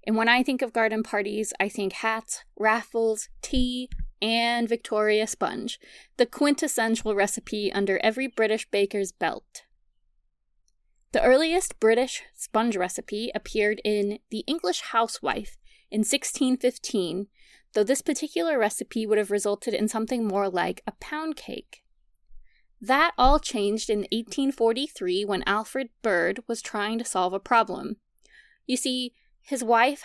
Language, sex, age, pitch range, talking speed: English, female, 20-39, 205-255 Hz, 135 wpm